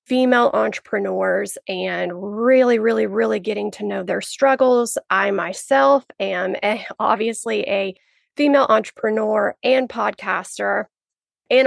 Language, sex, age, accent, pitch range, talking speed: English, female, 30-49, American, 200-255 Hz, 115 wpm